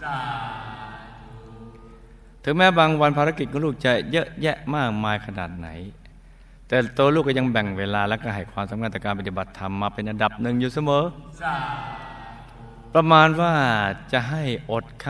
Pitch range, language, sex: 105-145 Hz, Thai, male